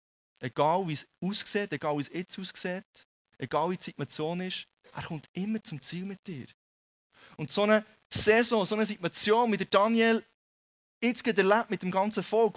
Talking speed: 165 wpm